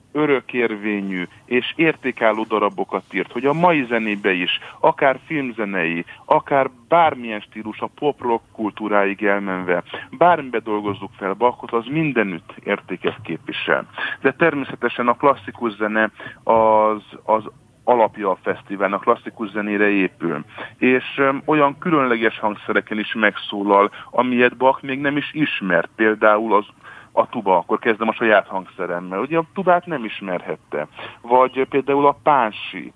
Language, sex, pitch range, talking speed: Hungarian, male, 105-135 Hz, 130 wpm